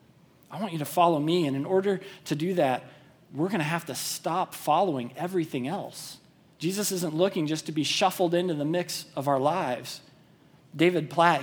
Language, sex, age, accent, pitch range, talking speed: English, male, 40-59, American, 135-165 Hz, 190 wpm